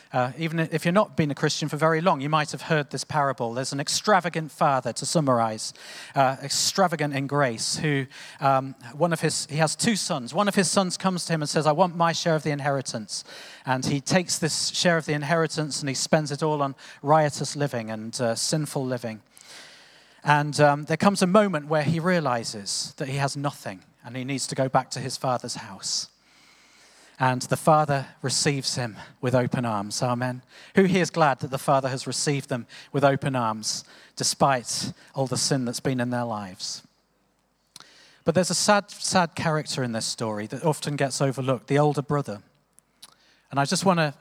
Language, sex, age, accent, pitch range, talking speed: English, male, 40-59, British, 130-160 Hz, 200 wpm